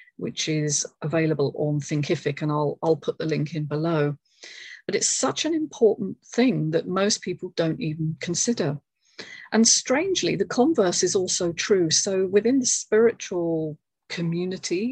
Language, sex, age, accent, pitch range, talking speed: English, female, 40-59, British, 160-200 Hz, 150 wpm